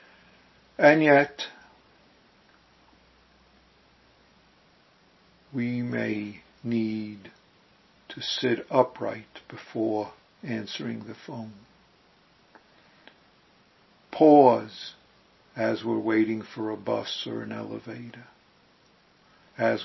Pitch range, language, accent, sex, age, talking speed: 110-120 Hz, English, American, male, 60-79, 70 wpm